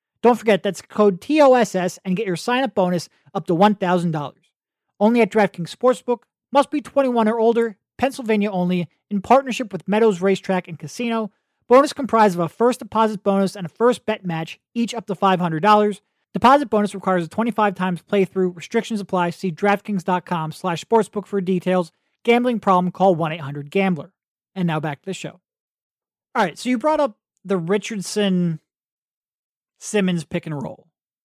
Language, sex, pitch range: English, male, 175-225 Hz